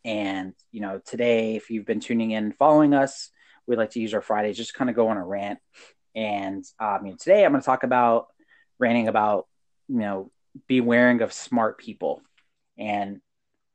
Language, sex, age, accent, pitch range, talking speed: English, male, 30-49, American, 105-130 Hz, 195 wpm